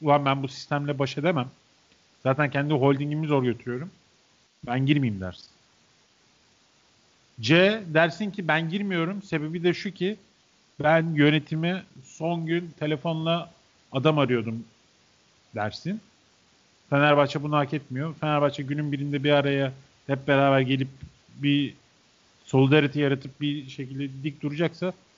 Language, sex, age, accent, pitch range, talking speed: Turkish, male, 40-59, native, 130-175 Hz, 120 wpm